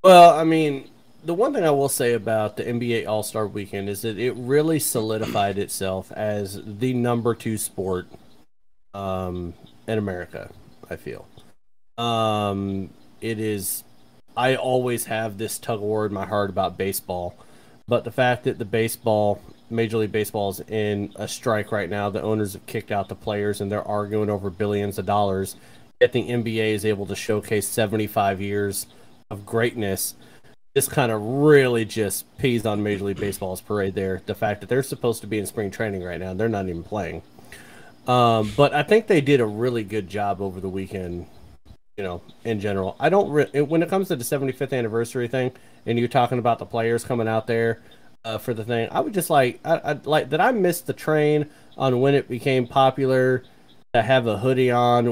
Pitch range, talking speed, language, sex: 100-125 Hz, 190 wpm, English, male